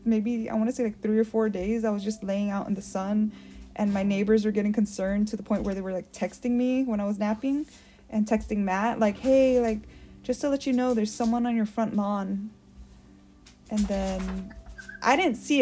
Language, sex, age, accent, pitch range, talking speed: English, female, 20-39, American, 190-230 Hz, 225 wpm